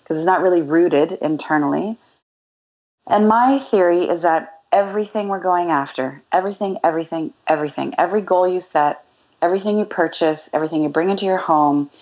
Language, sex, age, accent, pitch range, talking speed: English, female, 30-49, American, 150-185 Hz, 155 wpm